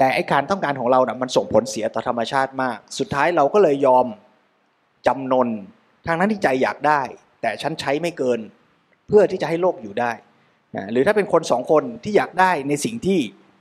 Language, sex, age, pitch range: Thai, male, 20-39, 130-175 Hz